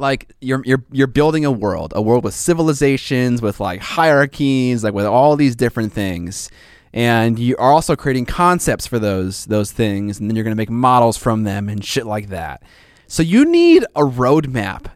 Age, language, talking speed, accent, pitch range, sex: 20-39, English, 185 wpm, American, 100-135 Hz, male